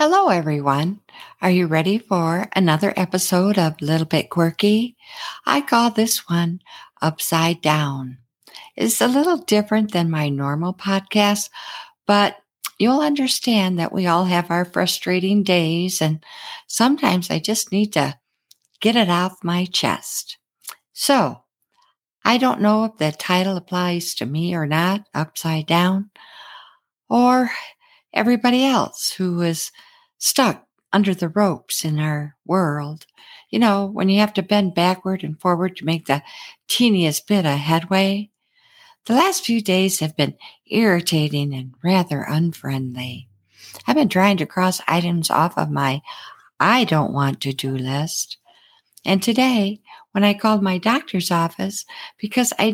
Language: English